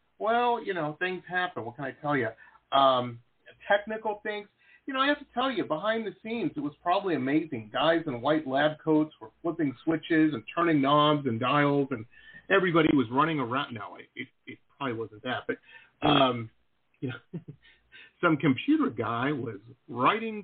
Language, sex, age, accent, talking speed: English, male, 40-59, American, 170 wpm